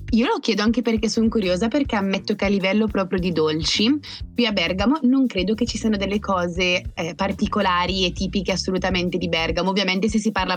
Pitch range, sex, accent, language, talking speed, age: 175-220 Hz, female, native, Italian, 205 wpm, 20-39